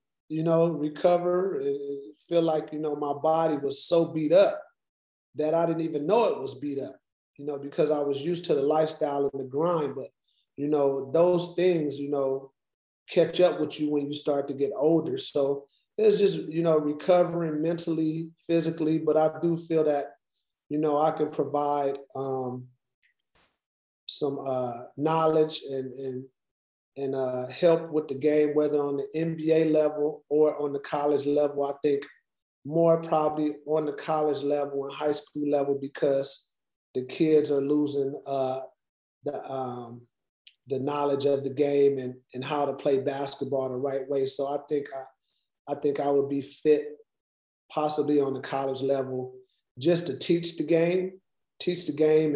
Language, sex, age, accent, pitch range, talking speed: English, male, 30-49, American, 140-160 Hz, 170 wpm